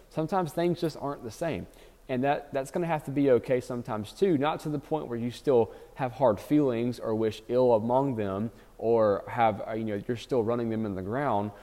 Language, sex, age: English, male, 20-39